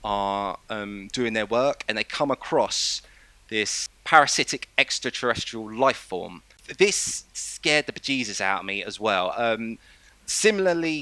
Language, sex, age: English, male, 30-49